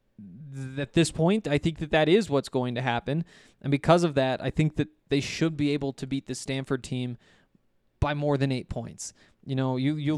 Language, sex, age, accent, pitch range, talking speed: English, male, 20-39, American, 130-160 Hz, 220 wpm